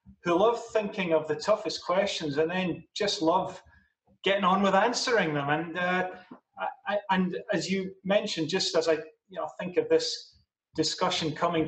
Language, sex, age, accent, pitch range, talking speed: English, male, 30-49, British, 155-200 Hz, 155 wpm